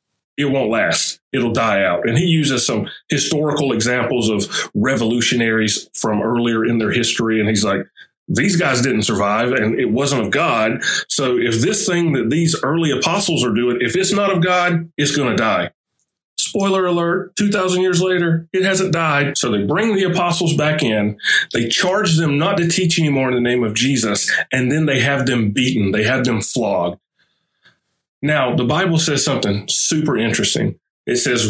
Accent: American